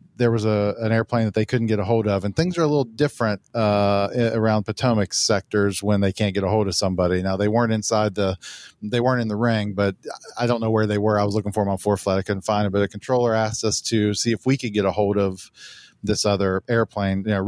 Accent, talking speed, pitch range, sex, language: American, 270 wpm, 100-120 Hz, male, English